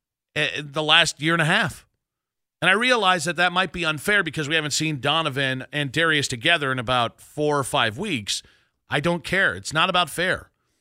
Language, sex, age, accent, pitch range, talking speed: English, male, 40-59, American, 135-165 Hz, 195 wpm